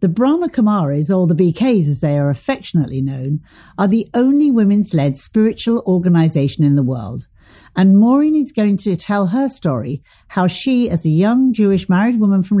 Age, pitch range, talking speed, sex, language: 50-69, 140-215 Hz, 180 wpm, female, English